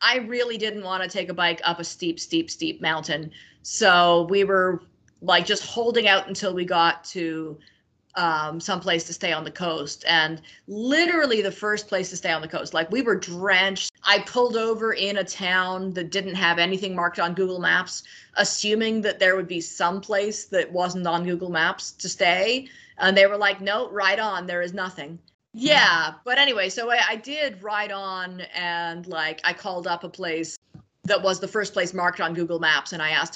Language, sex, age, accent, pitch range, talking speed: English, female, 30-49, American, 170-195 Hz, 205 wpm